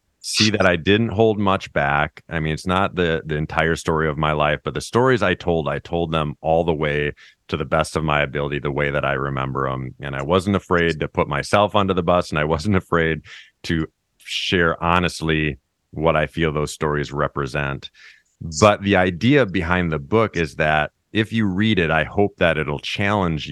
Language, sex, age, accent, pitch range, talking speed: English, male, 30-49, American, 75-90 Hz, 205 wpm